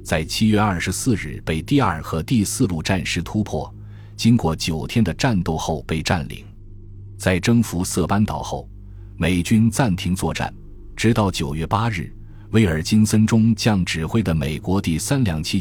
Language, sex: Chinese, male